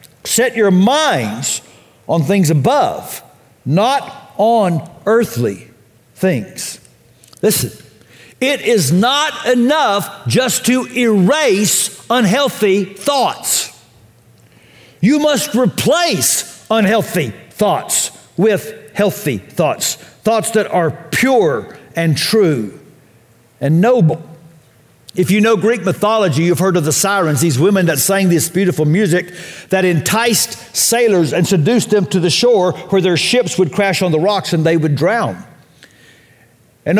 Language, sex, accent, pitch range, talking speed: English, male, American, 160-220 Hz, 120 wpm